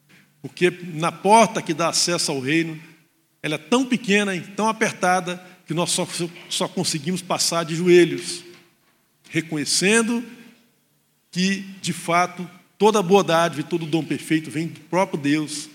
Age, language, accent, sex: 50-69, Portuguese, Brazilian, male